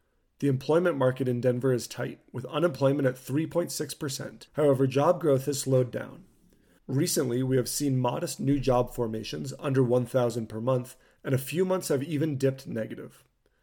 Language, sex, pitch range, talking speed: English, male, 125-145 Hz, 165 wpm